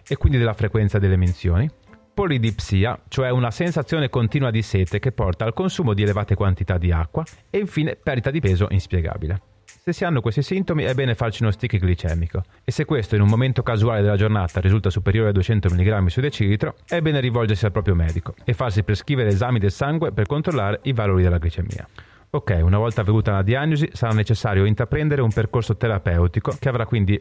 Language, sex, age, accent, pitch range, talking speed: Italian, male, 30-49, native, 100-140 Hz, 195 wpm